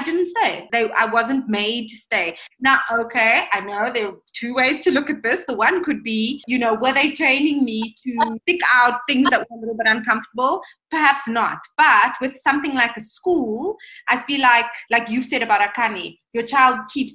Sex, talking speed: female, 205 wpm